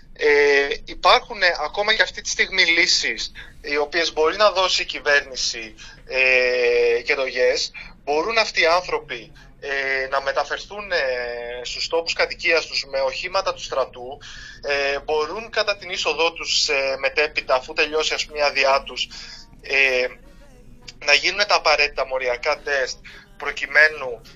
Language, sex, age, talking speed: Greek, male, 20-39, 145 wpm